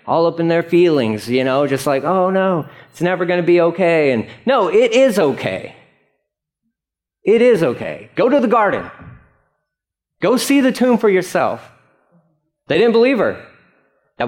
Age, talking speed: 40-59, 170 wpm